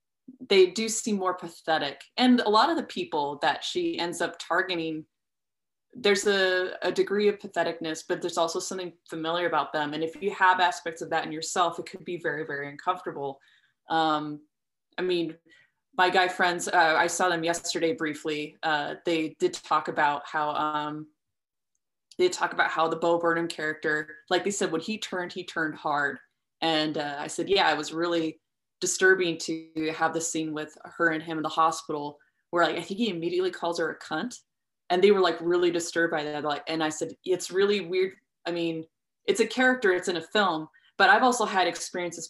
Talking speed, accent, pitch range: 190 wpm, American, 160-190 Hz